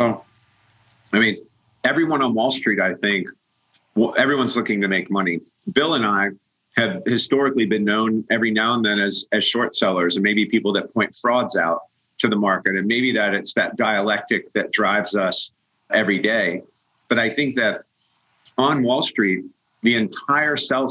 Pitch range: 105-130 Hz